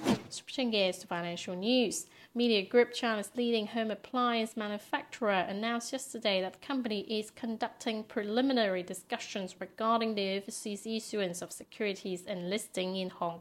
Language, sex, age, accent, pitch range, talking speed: English, female, 30-49, British, 190-235 Hz, 140 wpm